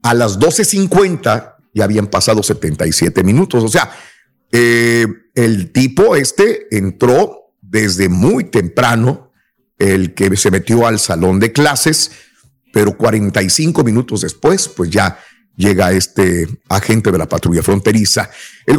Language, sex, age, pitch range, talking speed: Spanish, male, 50-69, 110-150 Hz, 130 wpm